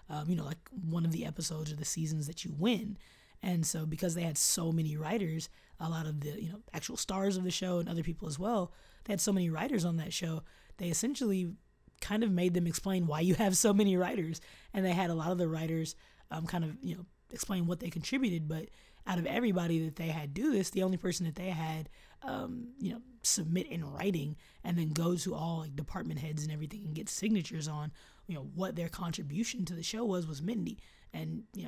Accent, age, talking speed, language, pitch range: American, 20-39, 235 wpm, English, 160-195 Hz